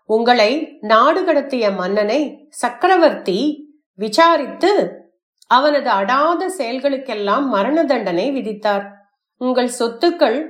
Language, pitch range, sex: English, 215-295 Hz, female